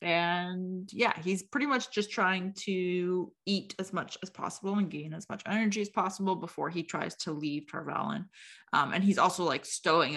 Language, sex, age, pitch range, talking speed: English, female, 20-39, 155-200 Hz, 185 wpm